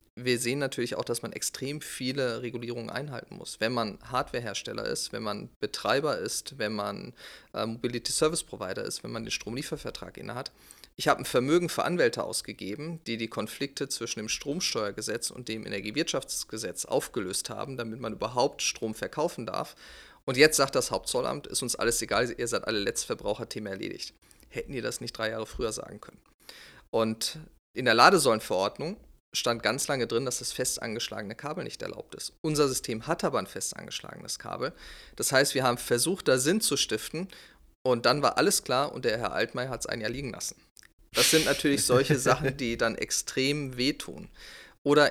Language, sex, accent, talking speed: German, male, German, 180 wpm